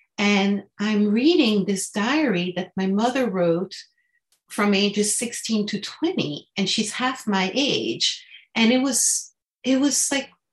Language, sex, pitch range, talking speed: English, female, 185-245 Hz, 140 wpm